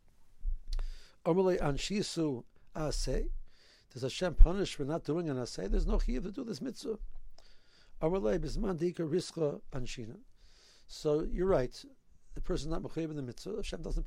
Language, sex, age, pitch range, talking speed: English, male, 60-79, 140-185 Hz, 115 wpm